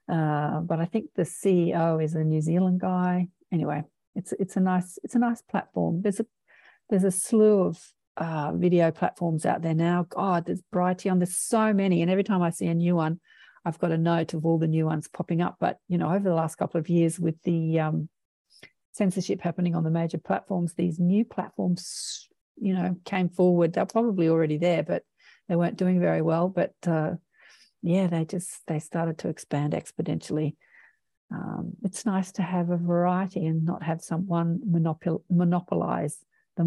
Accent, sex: Australian, female